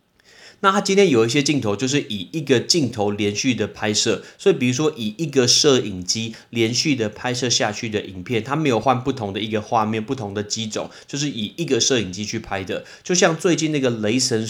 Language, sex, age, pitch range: Chinese, male, 30-49, 110-145 Hz